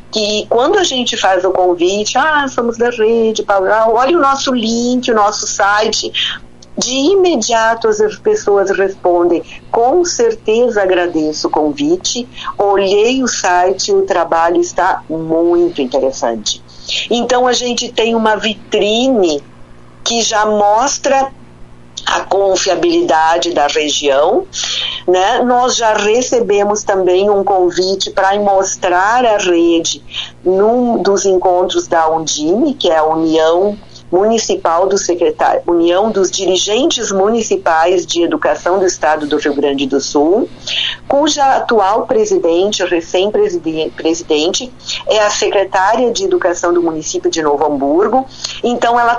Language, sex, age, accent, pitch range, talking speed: Portuguese, female, 50-69, Brazilian, 170-230 Hz, 125 wpm